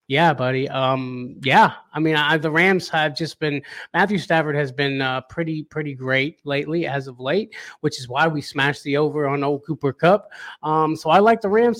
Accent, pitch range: American, 145-195 Hz